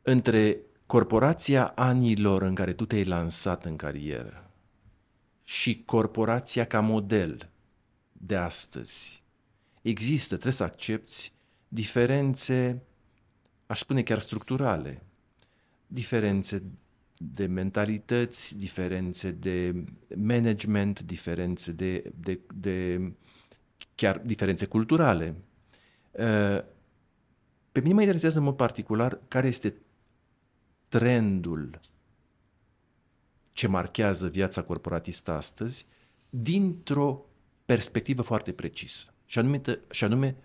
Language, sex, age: Romanian, male, 50-69